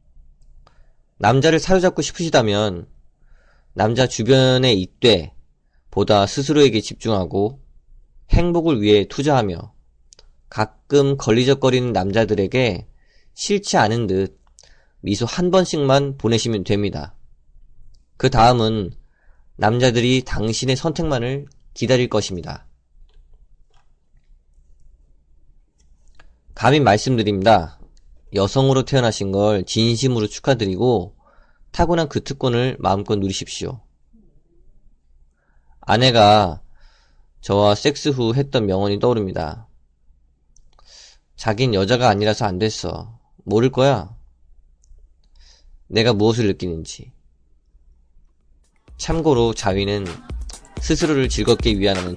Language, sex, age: Korean, male, 20-39